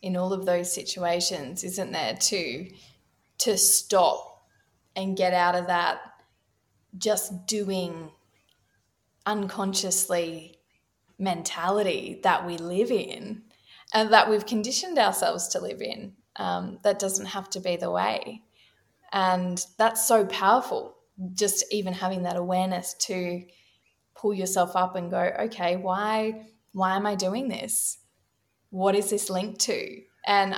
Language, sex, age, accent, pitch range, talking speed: English, female, 10-29, Australian, 185-210 Hz, 130 wpm